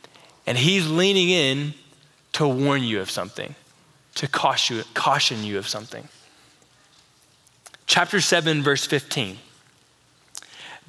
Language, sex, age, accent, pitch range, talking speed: English, male, 20-39, American, 185-250 Hz, 100 wpm